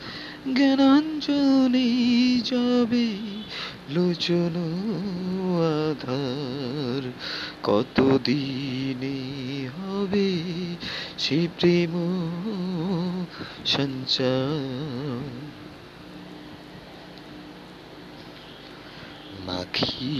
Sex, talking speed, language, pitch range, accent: male, 35 wpm, Bengali, 140-195 Hz, native